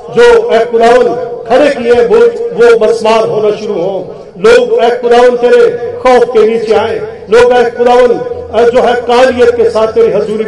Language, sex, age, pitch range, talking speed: Hindi, male, 40-59, 220-250 Hz, 115 wpm